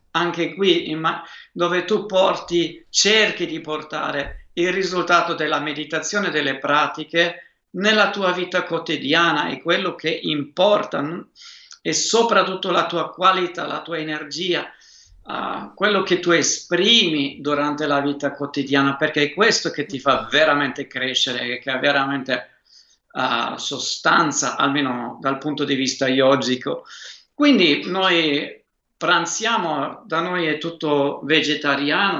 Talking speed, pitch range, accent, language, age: 130 wpm, 145-180 Hz, native, Italian, 50-69